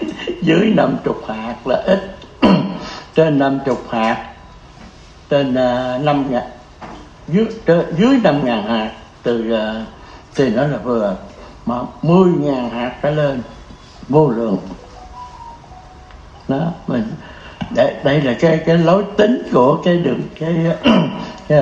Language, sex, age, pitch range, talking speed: Vietnamese, male, 60-79, 125-175 Hz, 130 wpm